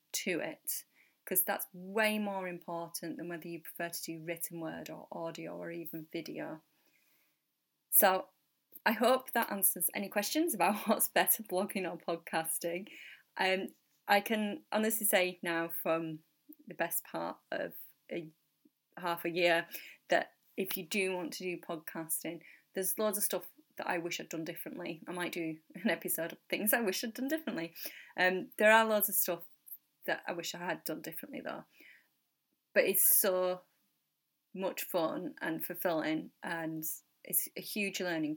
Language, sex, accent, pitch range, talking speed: English, female, British, 165-195 Hz, 165 wpm